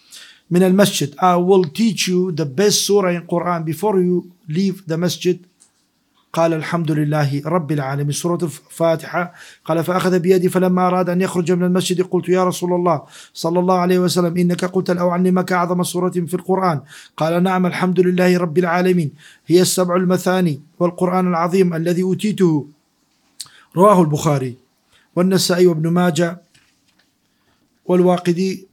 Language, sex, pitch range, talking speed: English, male, 155-180 Hz, 140 wpm